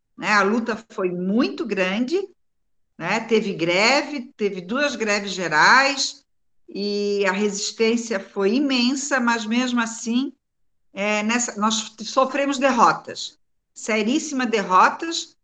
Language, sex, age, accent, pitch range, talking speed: Portuguese, female, 50-69, Brazilian, 205-275 Hz, 95 wpm